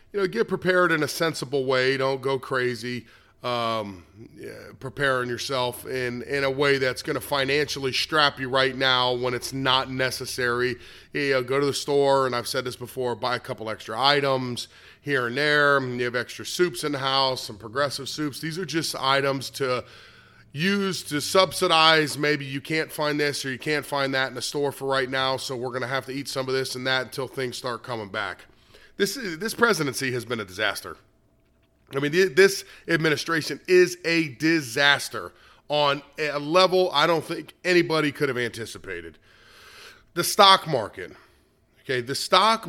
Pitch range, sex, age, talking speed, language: 120-150 Hz, male, 30-49, 185 wpm, English